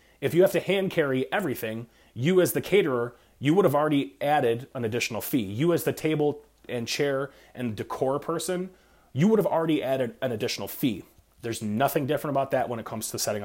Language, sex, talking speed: English, male, 200 wpm